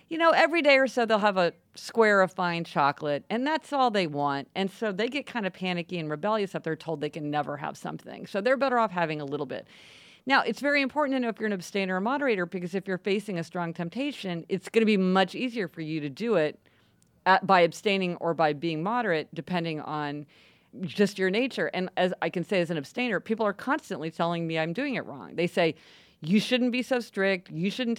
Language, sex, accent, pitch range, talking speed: English, female, American, 160-220 Hz, 240 wpm